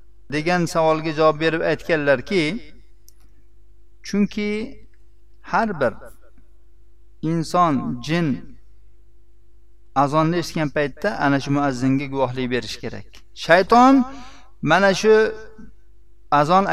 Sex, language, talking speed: male, Russian, 90 wpm